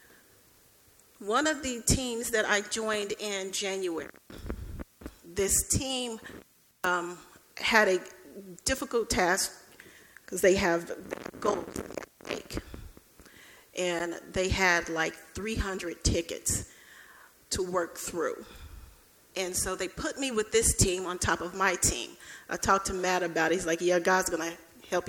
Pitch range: 185-255 Hz